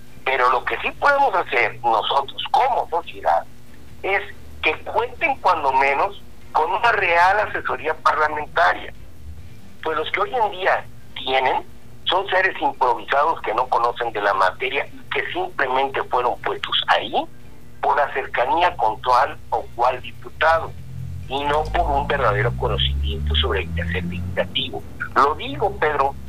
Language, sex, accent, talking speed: Spanish, male, Mexican, 140 wpm